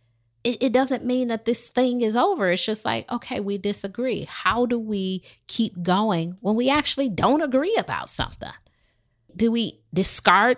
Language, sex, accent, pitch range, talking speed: English, female, American, 150-220 Hz, 165 wpm